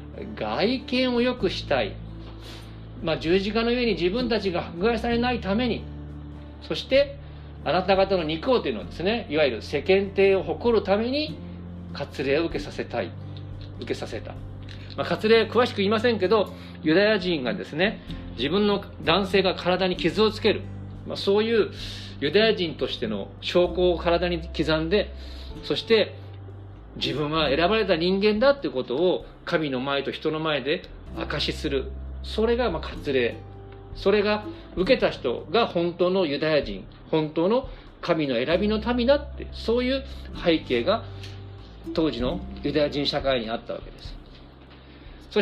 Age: 50-69